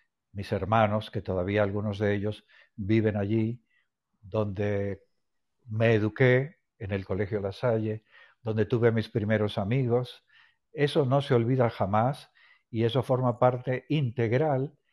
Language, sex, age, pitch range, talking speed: Spanish, male, 60-79, 110-140 Hz, 135 wpm